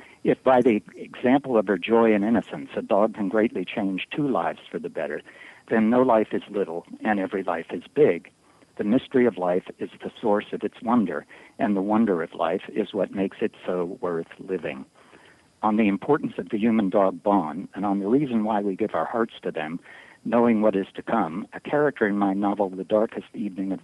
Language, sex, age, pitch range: English, male, 60-79, 95-115 Hz